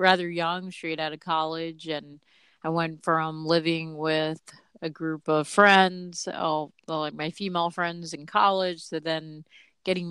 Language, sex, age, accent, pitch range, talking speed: English, female, 30-49, American, 155-175 Hz, 150 wpm